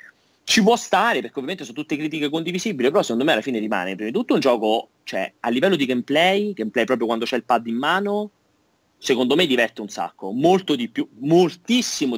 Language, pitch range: Italian, 110-170 Hz